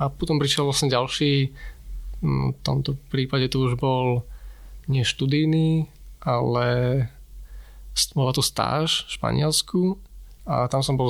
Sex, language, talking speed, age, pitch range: male, Slovak, 120 wpm, 20-39, 125-150 Hz